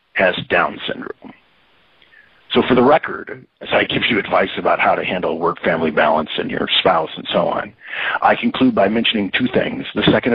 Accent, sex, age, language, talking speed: American, male, 40-59, English, 190 wpm